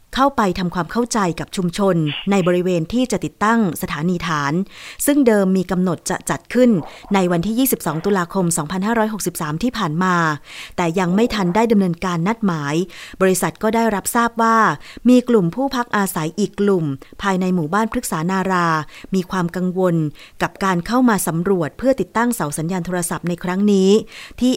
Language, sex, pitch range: Thai, female, 170-215 Hz